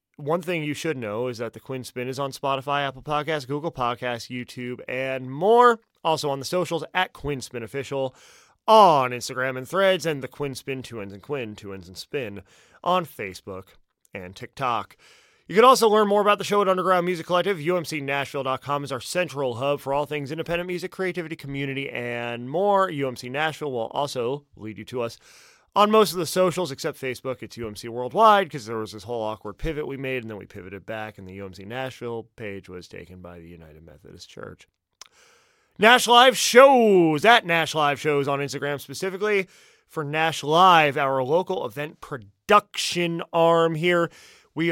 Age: 30-49